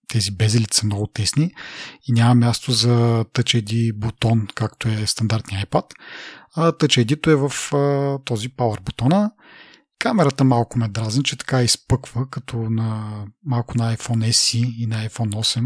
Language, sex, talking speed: Bulgarian, male, 155 wpm